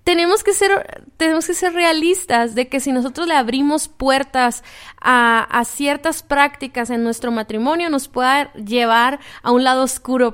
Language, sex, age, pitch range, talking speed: Spanish, female, 20-39, 255-305 Hz, 165 wpm